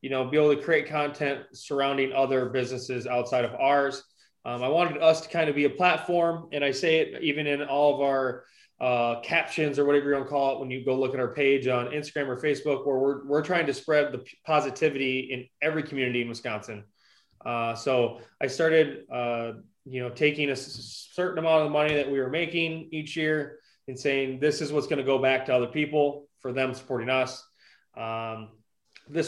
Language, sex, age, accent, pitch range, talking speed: English, male, 20-39, American, 125-150 Hz, 205 wpm